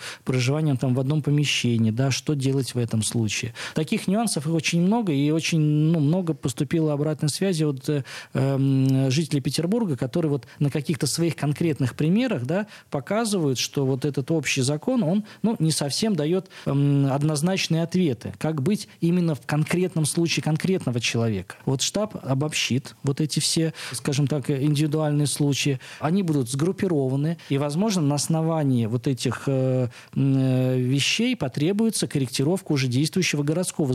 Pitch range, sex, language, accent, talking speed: 135-165 Hz, male, Russian, native, 145 wpm